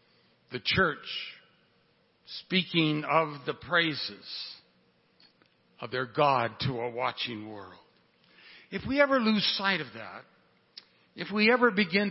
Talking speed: 120 wpm